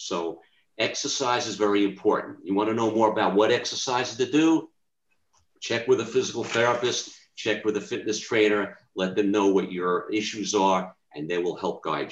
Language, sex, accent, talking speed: English, male, American, 185 wpm